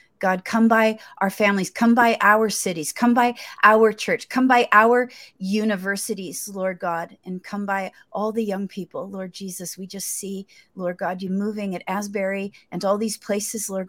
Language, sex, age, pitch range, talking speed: English, female, 40-59, 185-215 Hz, 180 wpm